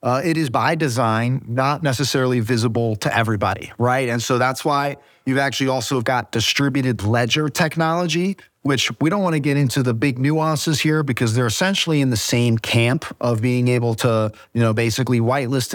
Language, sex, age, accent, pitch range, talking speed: English, male, 30-49, American, 120-145 Hz, 185 wpm